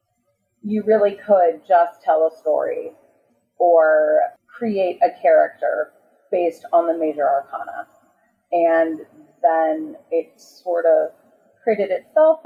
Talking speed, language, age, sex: 110 wpm, English, 30-49, female